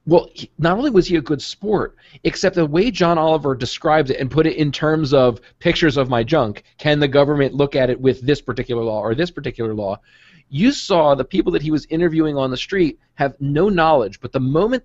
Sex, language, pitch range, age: male, English, 135-170 Hz, 40-59